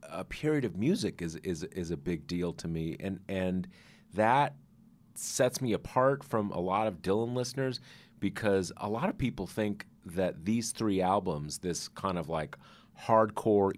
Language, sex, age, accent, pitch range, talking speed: English, male, 30-49, American, 85-105 Hz, 170 wpm